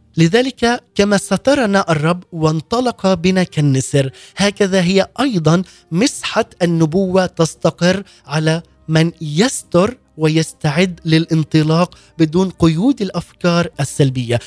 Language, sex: Arabic, male